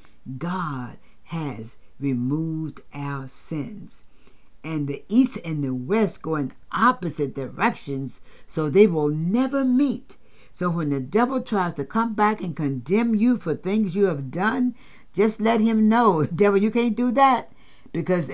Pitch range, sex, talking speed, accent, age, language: 140-205 Hz, female, 150 wpm, American, 60-79, English